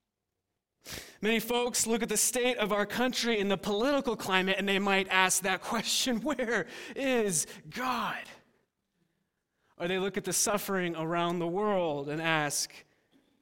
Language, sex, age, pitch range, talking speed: English, male, 30-49, 150-210 Hz, 150 wpm